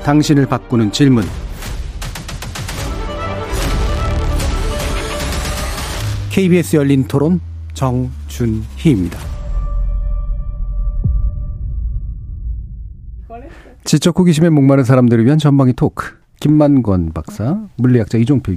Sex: male